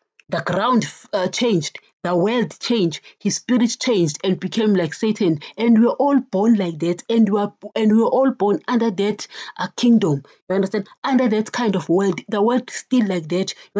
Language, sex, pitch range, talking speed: English, female, 185-240 Hz, 185 wpm